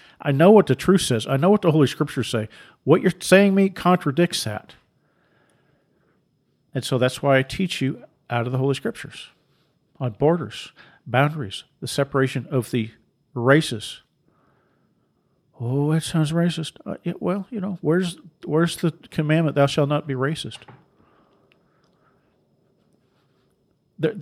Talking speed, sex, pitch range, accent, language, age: 145 wpm, male, 135-170 Hz, American, English, 50-69